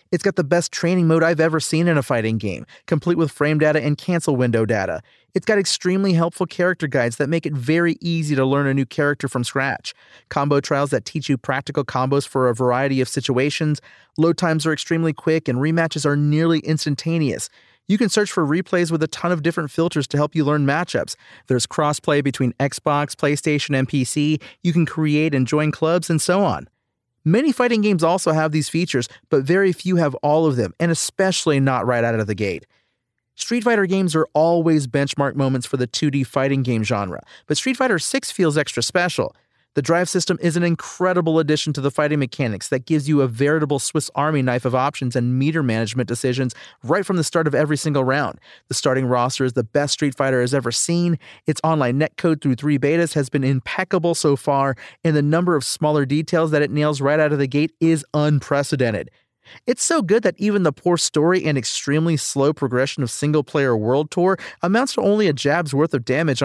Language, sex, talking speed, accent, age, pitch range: English, male, 210 wpm, American, 30-49, 135-165 Hz